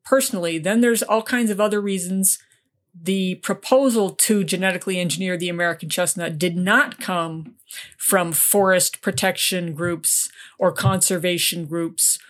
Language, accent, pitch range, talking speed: English, American, 175-205 Hz, 125 wpm